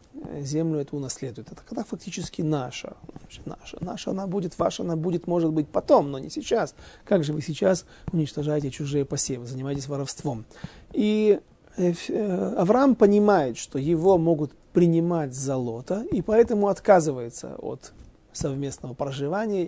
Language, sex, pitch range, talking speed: Russian, male, 140-185 Hz, 135 wpm